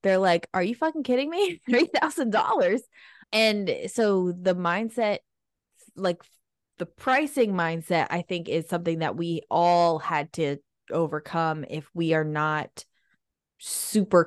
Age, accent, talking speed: 20-39, American, 130 wpm